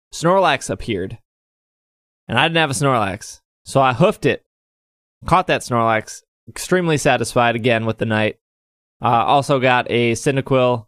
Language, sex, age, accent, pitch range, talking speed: English, male, 20-39, American, 110-145 Hz, 145 wpm